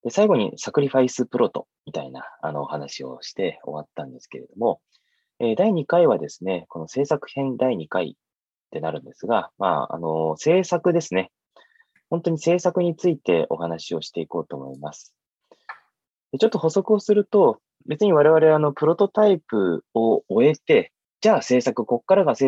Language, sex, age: English, male, 20-39